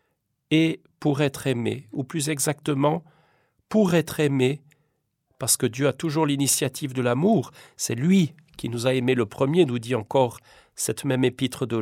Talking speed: 170 wpm